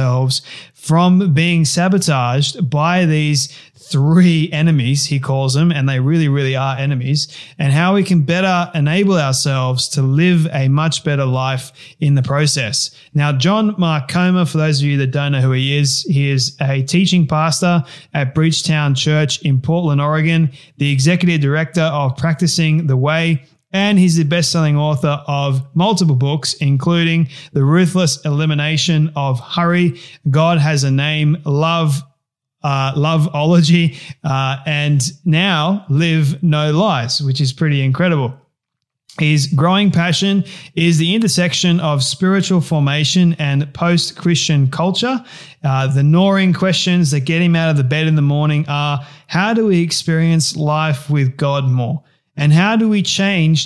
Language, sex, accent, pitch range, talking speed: English, male, Australian, 140-165 Hz, 150 wpm